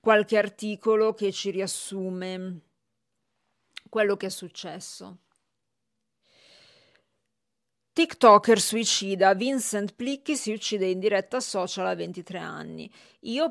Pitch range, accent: 180-215 Hz, native